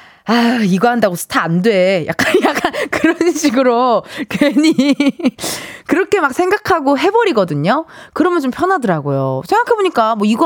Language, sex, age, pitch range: Korean, female, 20-39, 190-290 Hz